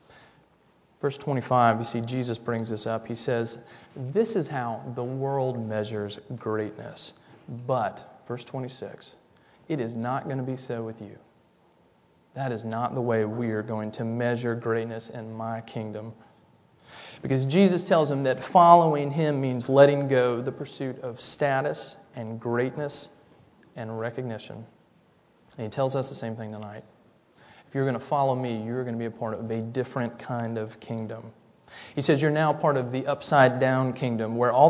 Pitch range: 115-135 Hz